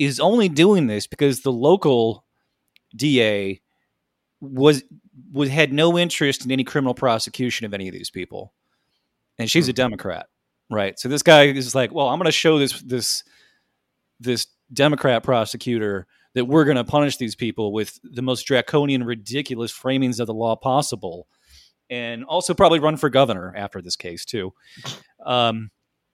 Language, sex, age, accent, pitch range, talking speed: English, male, 30-49, American, 115-150 Hz, 160 wpm